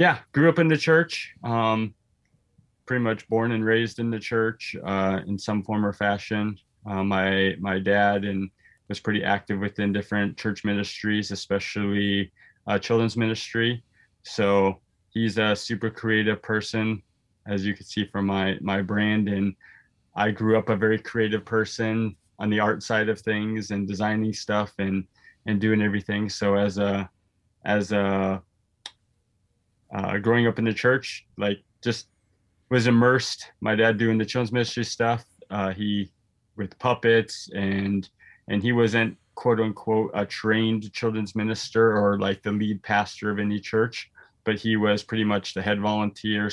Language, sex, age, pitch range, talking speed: English, male, 20-39, 100-110 Hz, 160 wpm